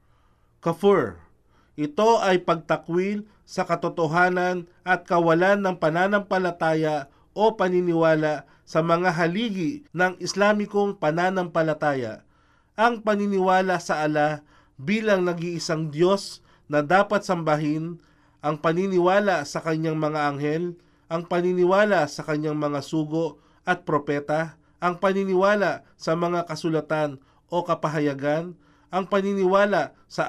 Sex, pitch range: male, 150-185 Hz